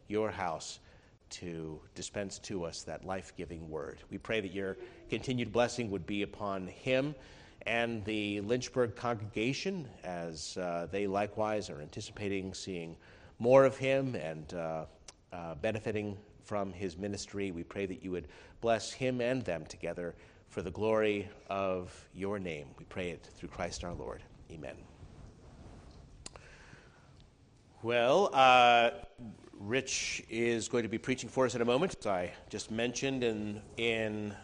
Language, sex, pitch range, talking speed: English, male, 100-130 Hz, 145 wpm